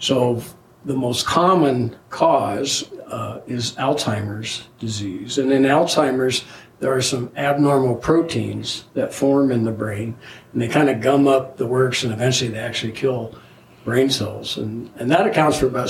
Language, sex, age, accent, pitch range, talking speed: English, male, 60-79, American, 115-135 Hz, 160 wpm